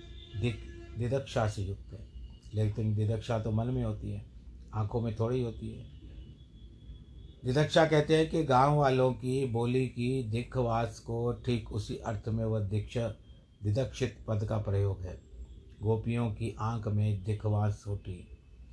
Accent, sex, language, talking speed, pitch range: native, male, Hindi, 145 wpm, 100-120 Hz